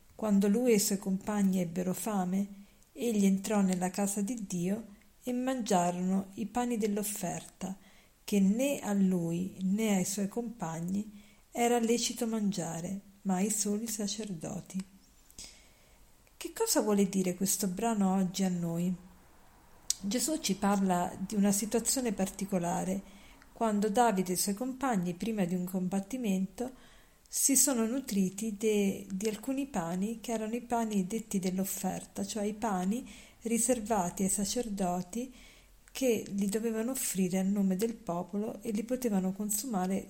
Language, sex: Italian, female